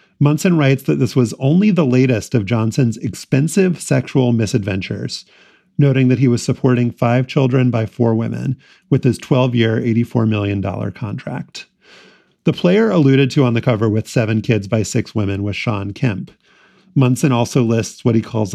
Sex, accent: male, American